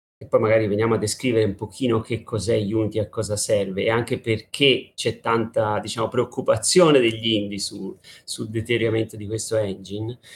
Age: 30-49